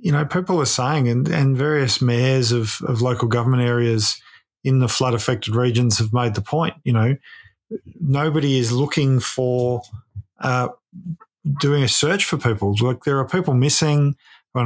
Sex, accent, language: male, Australian, English